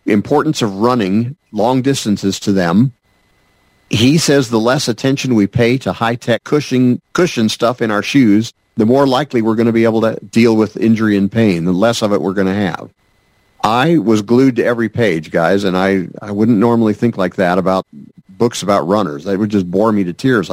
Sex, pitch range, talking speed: male, 100-120 Hz, 205 wpm